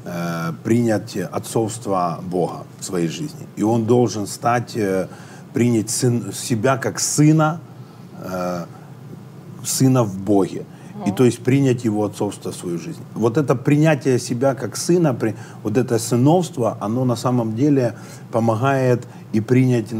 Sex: male